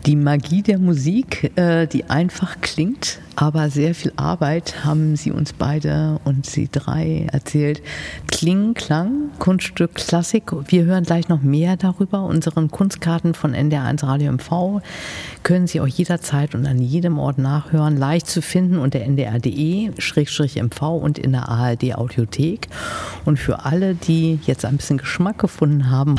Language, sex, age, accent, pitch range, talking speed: German, female, 50-69, German, 135-170 Hz, 150 wpm